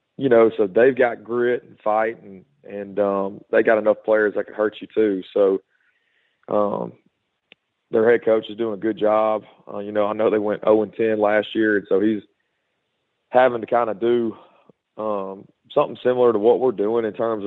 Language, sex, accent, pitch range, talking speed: English, male, American, 105-120 Hz, 205 wpm